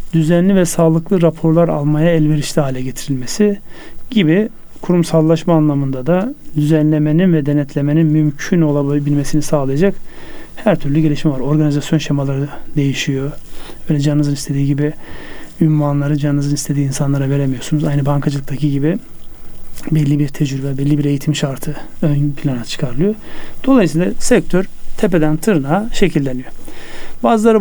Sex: male